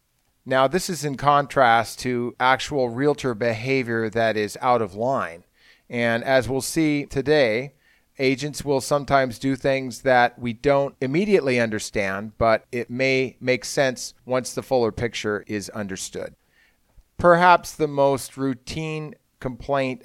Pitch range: 115-135 Hz